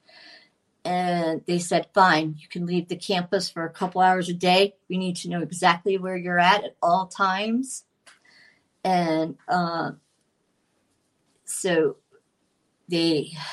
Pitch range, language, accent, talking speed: 155-180 Hz, English, American, 135 wpm